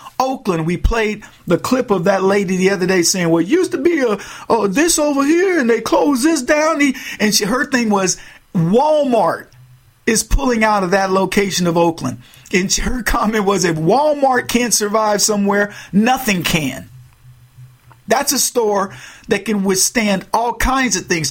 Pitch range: 160-225 Hz